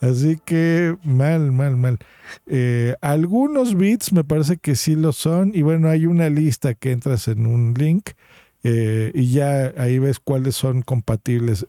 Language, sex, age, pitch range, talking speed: Spanish, male, 50-69, 120-155 Hz, 165 wpm